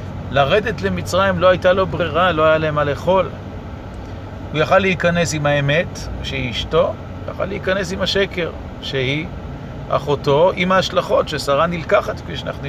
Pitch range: 125-180 Hz